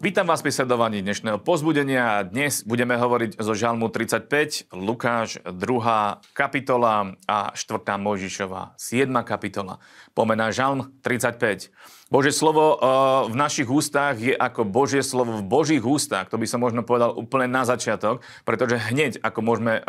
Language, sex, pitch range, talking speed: Slovak, male, 105-130 Hz, 140 wpm